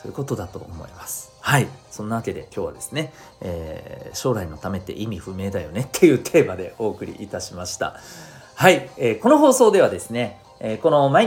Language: Japanese